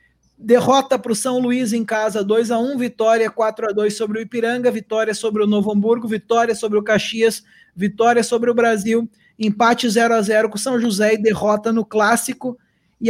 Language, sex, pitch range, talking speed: Portuguese, male, 215-265 Hz, 175 wpm